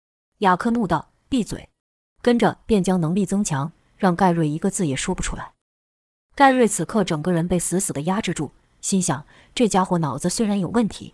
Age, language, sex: 20-39, Chinese, female